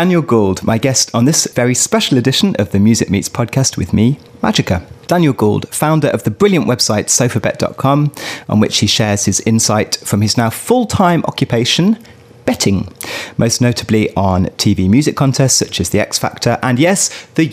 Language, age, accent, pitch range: English, 30-49, British, 110-145 Hz